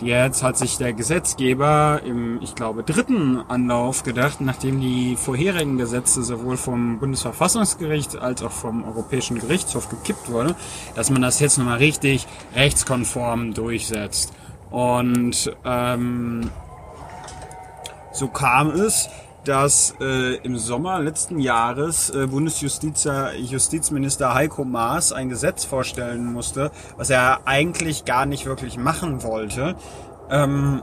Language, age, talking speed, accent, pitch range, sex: German, 30-49, 120 wpm, German, 120-145 Hz, male